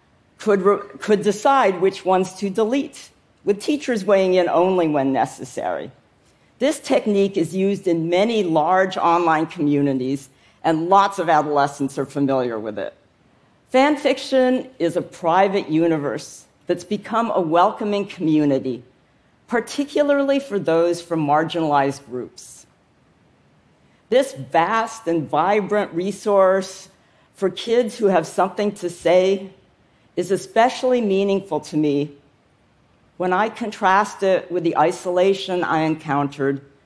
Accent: American